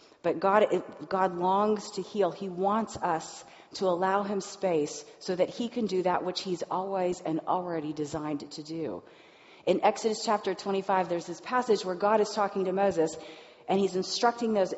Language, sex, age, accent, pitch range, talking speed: English, female, 40-59, American, 170-210 Hz, 180 wpm